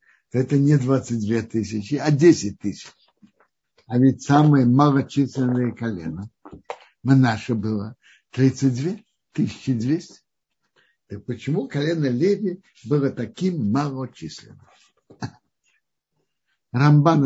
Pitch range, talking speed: 120-170 Hz, 85 wpm